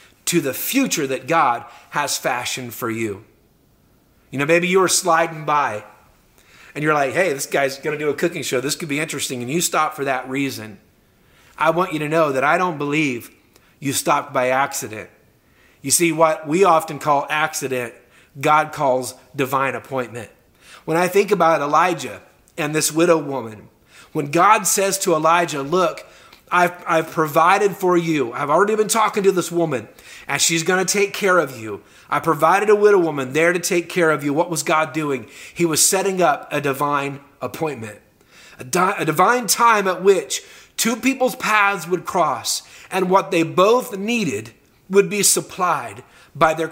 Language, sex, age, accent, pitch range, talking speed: English, male, 30-49, American, 140-185 Hz, 175 wpm